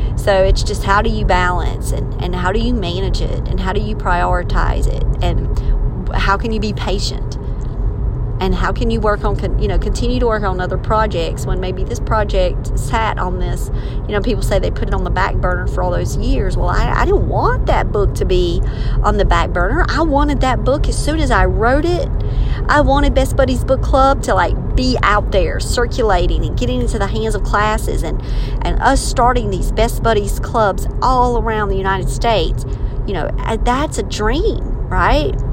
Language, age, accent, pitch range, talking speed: English, 40-59, American, 110-125 Hz, 210 wpm